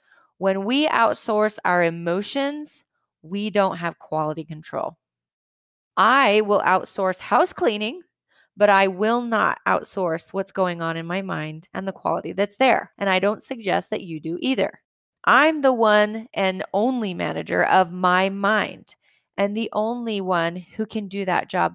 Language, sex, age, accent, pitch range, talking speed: English, female, 30-49, American, 175-220 Hz, 155 wpm